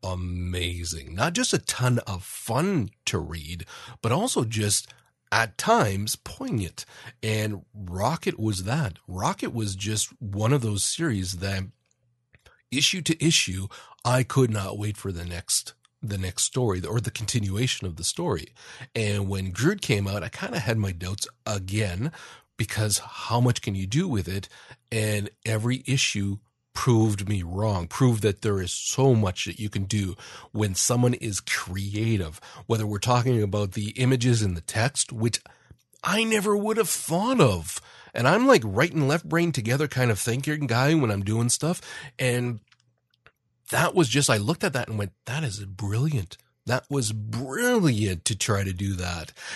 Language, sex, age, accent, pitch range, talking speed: English, male, 40-59, American, 100-130 Hz, 170 wpm